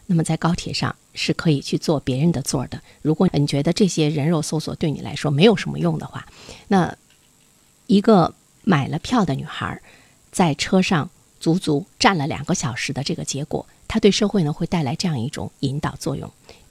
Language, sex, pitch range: Chinese, female, 150-200 Hz